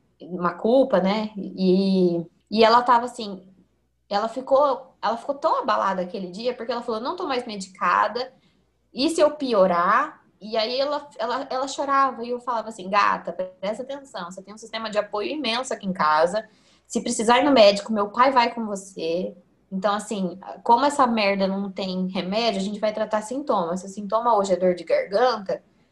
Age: 20-39